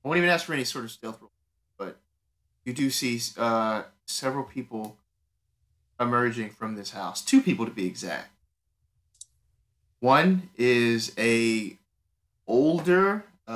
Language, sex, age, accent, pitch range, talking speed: English, male, 30-49, American, 105-140 Hz, 130 wpm